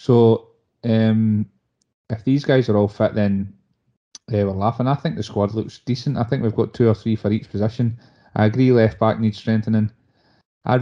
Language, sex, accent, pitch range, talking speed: English, male, British, 105-115 Hz, 190 wpm